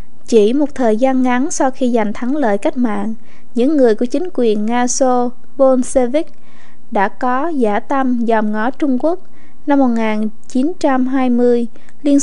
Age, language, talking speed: 20-39, Vietnamese, 150 wpm